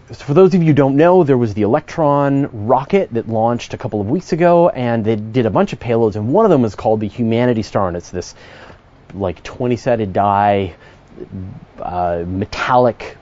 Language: English